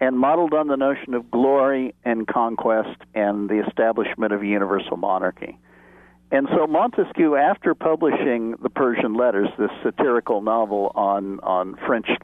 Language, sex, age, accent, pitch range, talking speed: English, male, 60-79, American, 115-155 Hz, 140 wpm